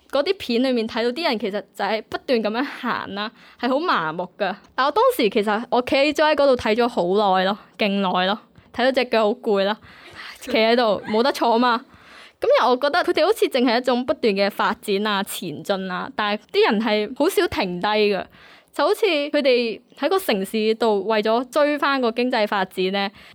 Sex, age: female, 10-29